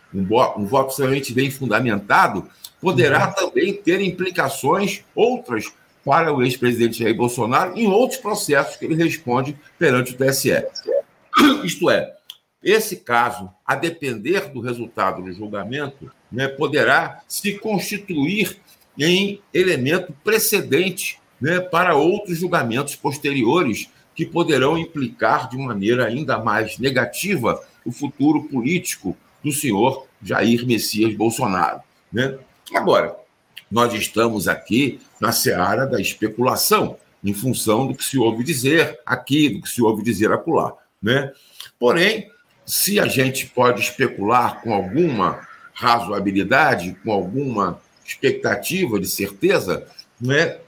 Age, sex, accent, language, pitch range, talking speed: 60-79, male, Brazilian, Portuguese, 120-170 Hz, 120 wpm